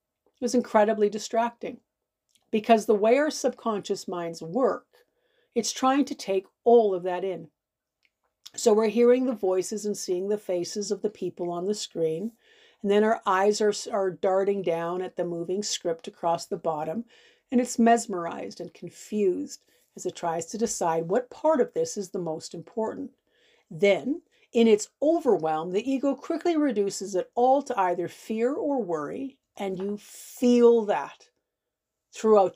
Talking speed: 160 wpm